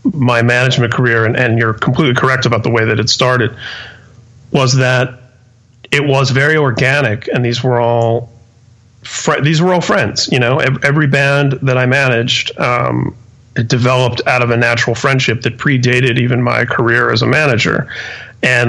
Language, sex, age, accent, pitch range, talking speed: English, male, 40-59, American, 115-130 Hz, 170 wpm